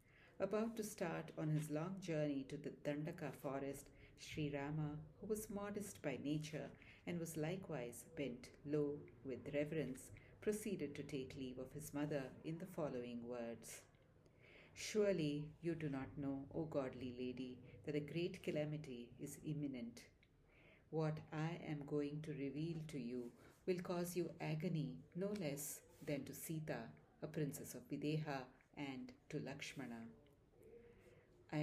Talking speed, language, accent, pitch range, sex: 140 wpm, English, Indian, 135-160 Hz, female